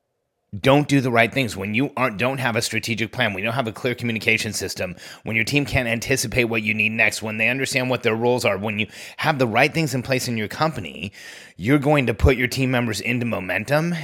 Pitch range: 110-135 Hz